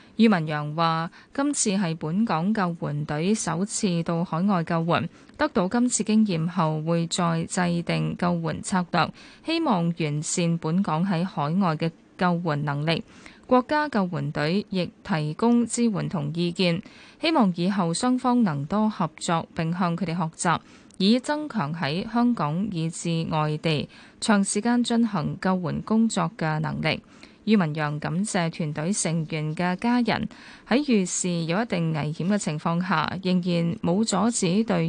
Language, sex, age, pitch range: Chinese, female, 10-29, 165-220 Hz